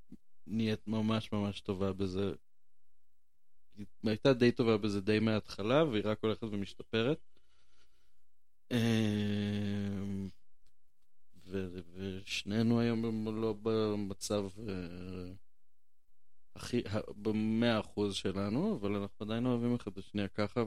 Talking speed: 90 wpm